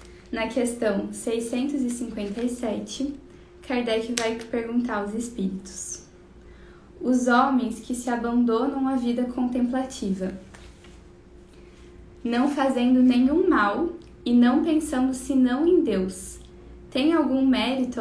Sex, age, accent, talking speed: female, 10-29, Brazilian, 95 wpm